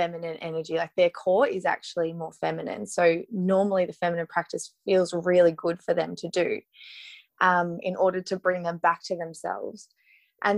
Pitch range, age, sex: 170-195 Hz, 20-39, female